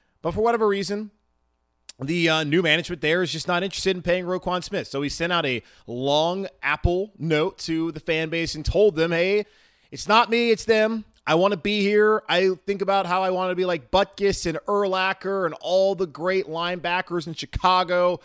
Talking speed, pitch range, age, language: 205 wpm, 135-190 Hz, 30-49, English